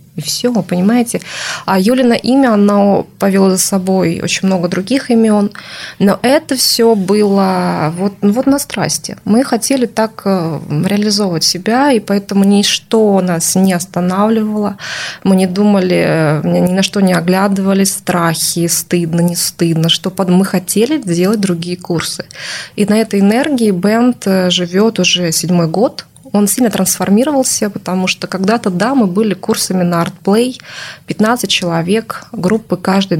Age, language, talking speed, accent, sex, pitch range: 20-39, Russian, 140 wpm, native, female, 175-215 Hz